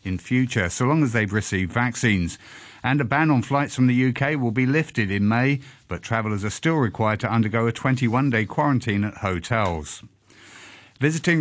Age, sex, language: 50-69, male, English